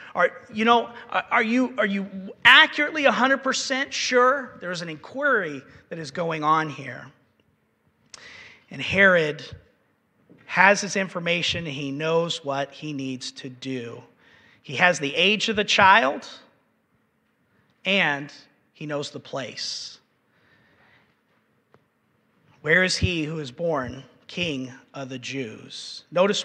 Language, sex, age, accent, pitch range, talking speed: English, male, 40-59, American, 150-210 Hz, 120 wpm